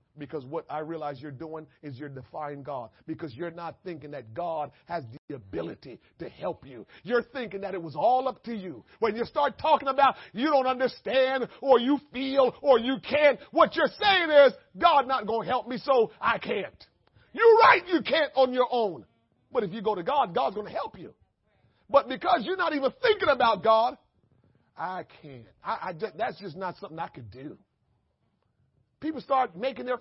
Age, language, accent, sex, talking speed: 40-59, English, American, male, 195 wpm